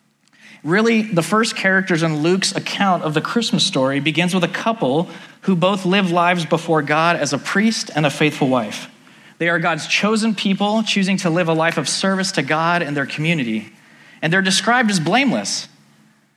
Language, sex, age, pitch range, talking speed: English, male, 30-49, 150-195 Hz, 185 wpm